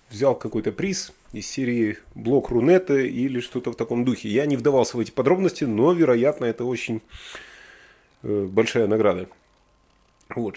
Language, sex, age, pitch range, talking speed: Russian, male, 30-49, 110-155 Hz, 150 wpm